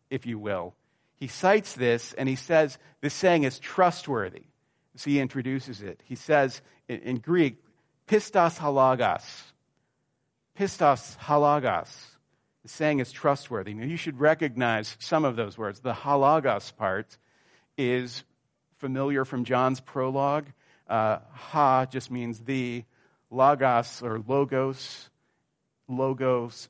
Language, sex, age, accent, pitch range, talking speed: English, male, 40-59, American, 125-150 Hz, 125 wpm